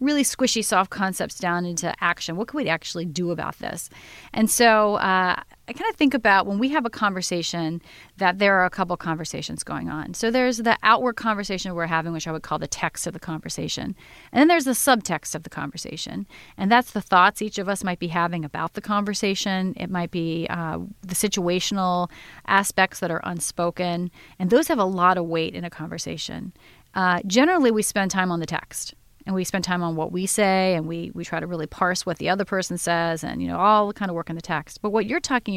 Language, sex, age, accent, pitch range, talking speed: English, female, 30-49, American, 170-210 Hz, 230 wpm